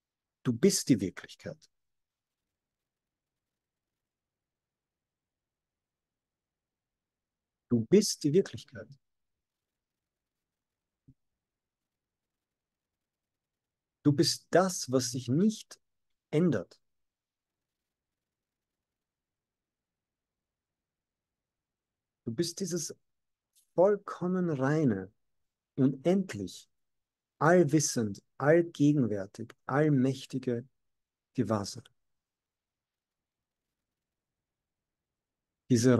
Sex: male